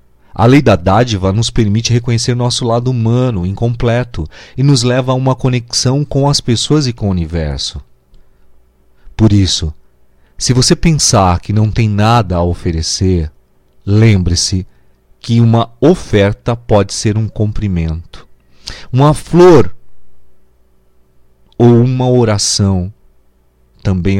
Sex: male